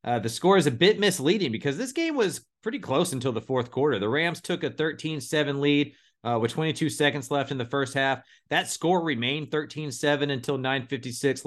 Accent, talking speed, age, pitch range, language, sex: American, 200 wpm, 40-59, 120-155 Hz, English, male